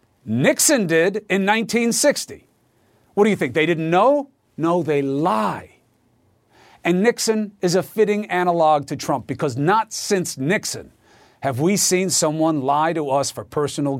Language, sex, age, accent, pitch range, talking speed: English, male, 50-69, American, 150-215 Hz, 150 wpm